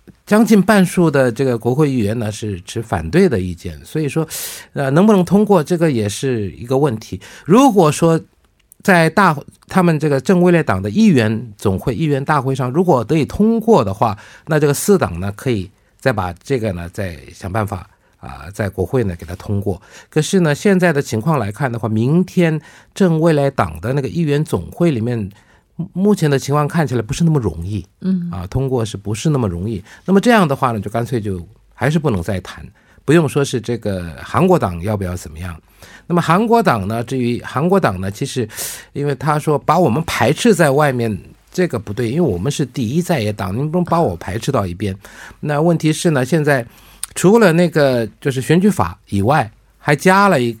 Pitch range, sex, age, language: 105-165 Hz, male, 50-69, Korean